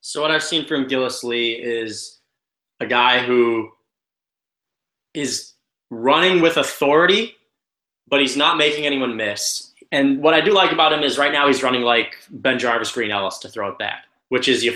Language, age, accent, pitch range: English, 20-39, American, 125-180 Hz